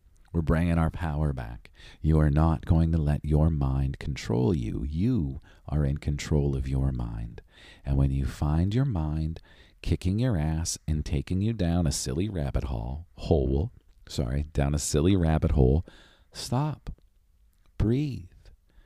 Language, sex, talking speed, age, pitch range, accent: English, male, 155 wpm, 40-59, 70-95 Hz, American